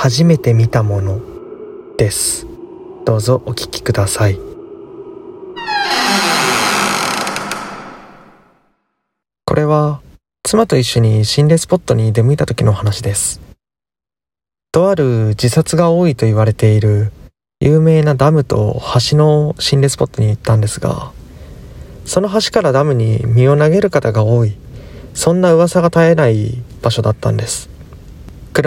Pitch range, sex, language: 115-160 Hz, male, Japanese